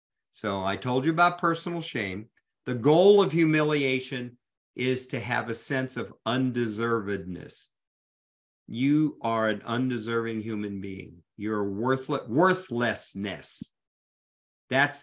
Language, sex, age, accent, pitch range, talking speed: English, male, 50-69, American, 105-135 Hz, 110 wpm